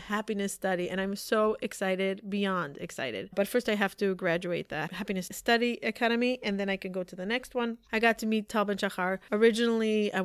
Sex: female